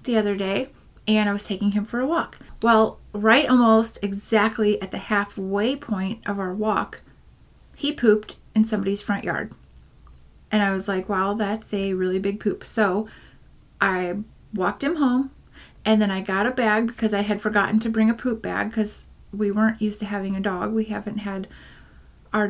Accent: American